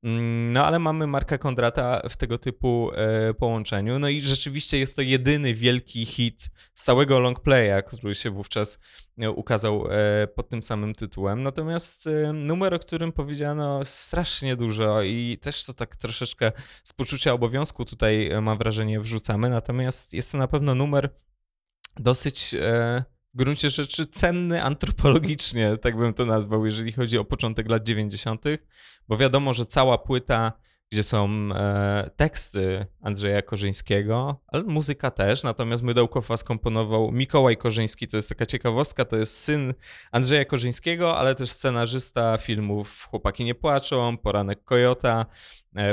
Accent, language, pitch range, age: native, Polish, 110-135 Hz, 20-39